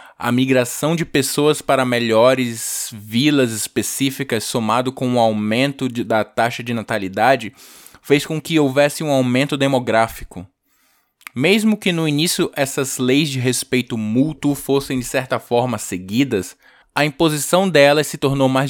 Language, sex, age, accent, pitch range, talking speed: Portuguese, male, 20-39, Brazilian, 120-140 Hz, 140 wpm